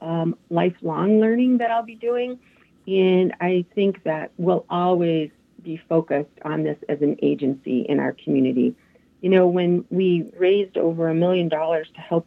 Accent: American